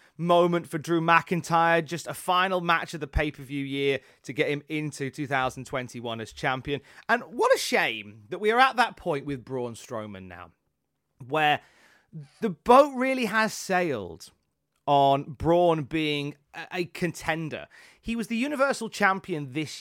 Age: 30-49